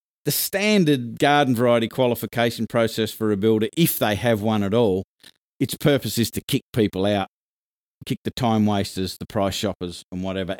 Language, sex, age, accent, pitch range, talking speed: English, male, 50-69, Australian, 115-155 Hz, 175 wpm